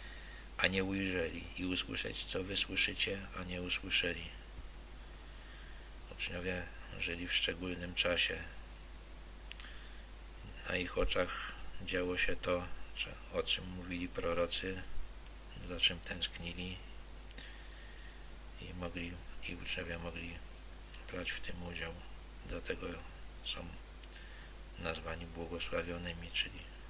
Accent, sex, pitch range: native, male, 85-95 Hz